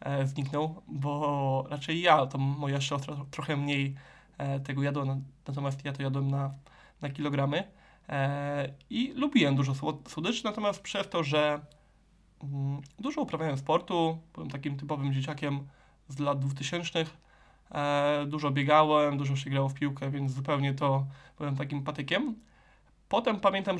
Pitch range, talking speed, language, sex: 140-170 Hz, 130 wpm, Polish, male